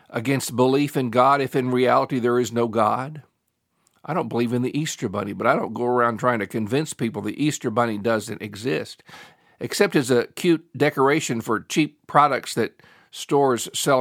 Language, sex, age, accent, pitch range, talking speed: English, male, 50-69, American, 115-145 Hz, 185 wpm